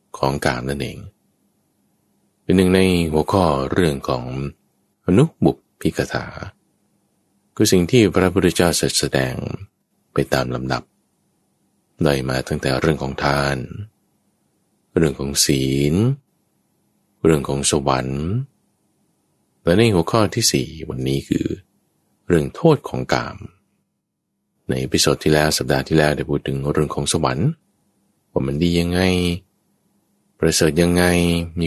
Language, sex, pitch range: English, male, 70-90 Hz